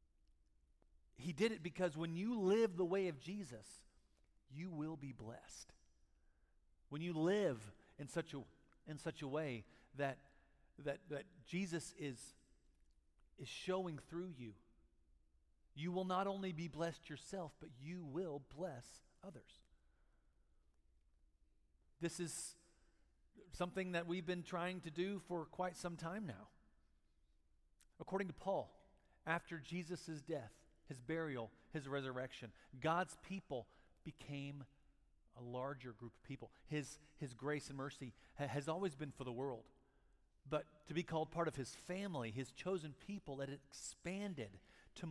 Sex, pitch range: male, 115-170 Hz